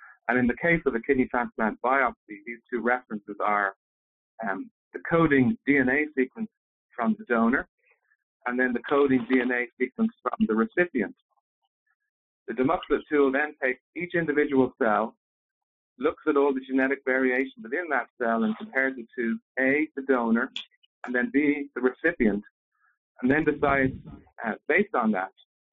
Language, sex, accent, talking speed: English, male, American, 155 wpm